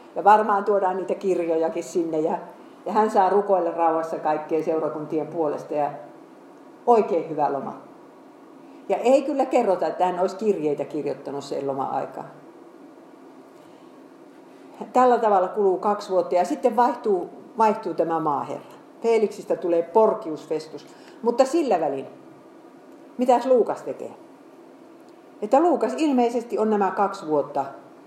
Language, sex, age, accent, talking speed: Finnish, female, 50-69, native, 125 wpm